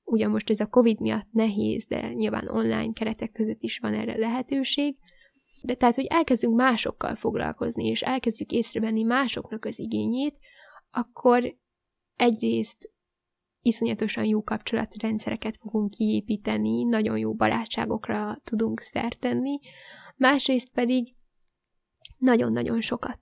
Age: 10-29